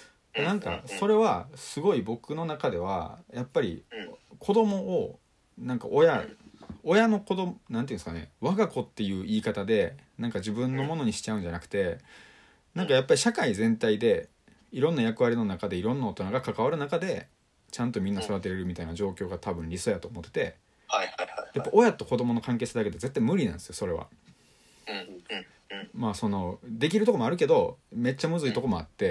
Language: Japanese